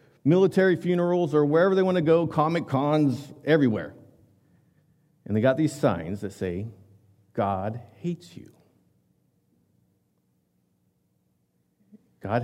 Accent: American